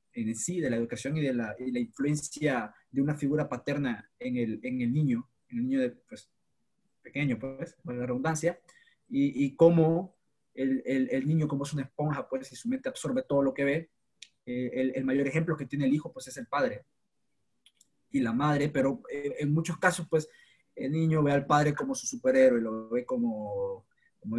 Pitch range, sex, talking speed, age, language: 135-175 Hz, male, 205 wpm, 20-39, Spanish